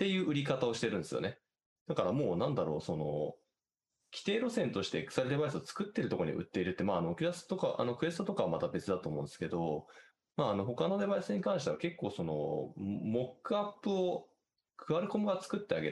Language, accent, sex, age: Japanese, native, male, 20-39